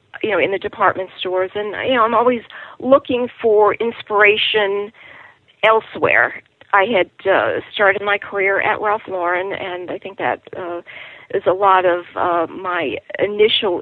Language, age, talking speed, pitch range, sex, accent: English, 40-59, 155 wpm, 180-215 Hz, female, American